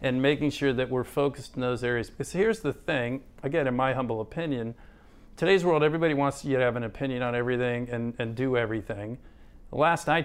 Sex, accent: male, American